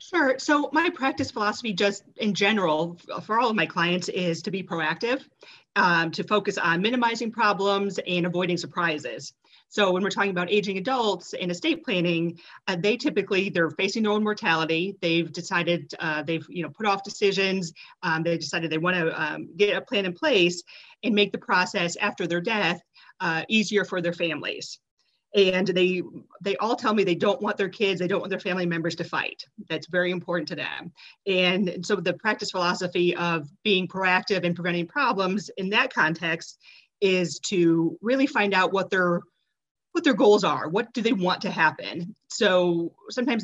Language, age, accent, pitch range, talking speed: English, 30-49, American, 170-205 Hz, 185 wpm